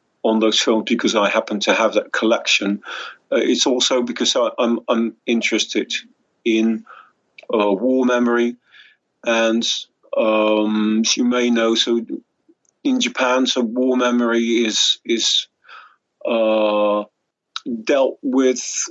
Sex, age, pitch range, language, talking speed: male, 40-59, 105-120 Hz, English, 125 wpm